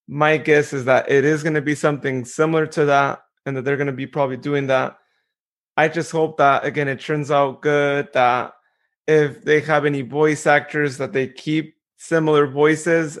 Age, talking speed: 30-49, 195 wpm